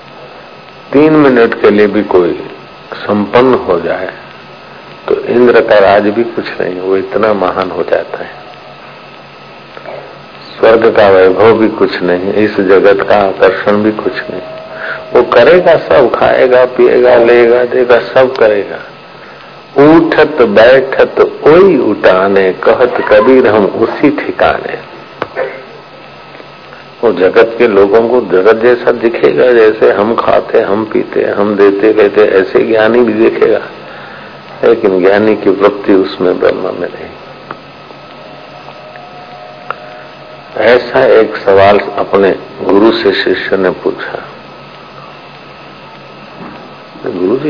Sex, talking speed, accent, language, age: male, 115 wpm, native, Hindi, 50-69